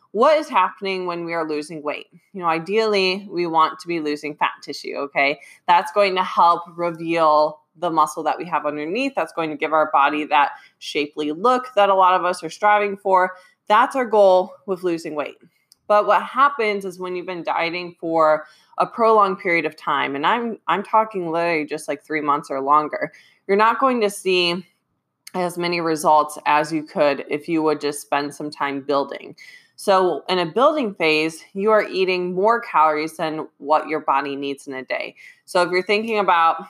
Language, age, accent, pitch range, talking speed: English, 20-39, American, 150-190 Hz, 195 wpm